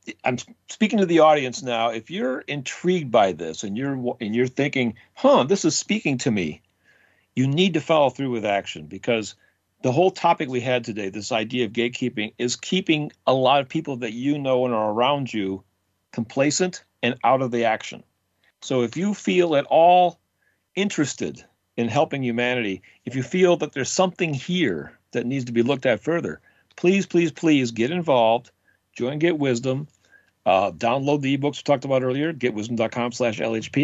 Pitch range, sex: 115-155 Hz, male